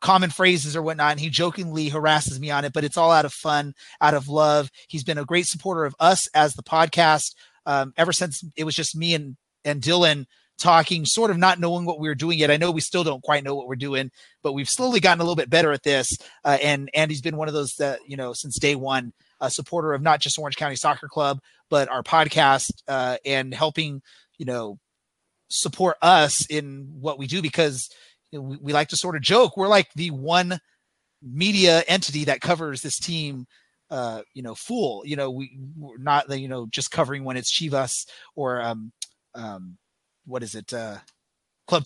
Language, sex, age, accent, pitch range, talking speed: English, male, 30-49, American, 135-165 Hz, 215 wpm